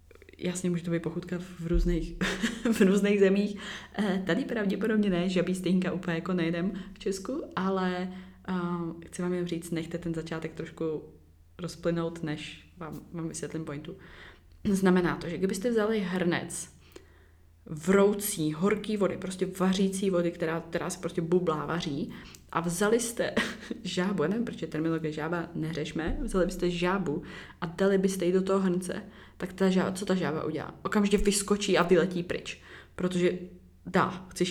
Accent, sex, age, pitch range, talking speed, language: native, female, 20-39, 165-195 Hz, 155 wpm, Czech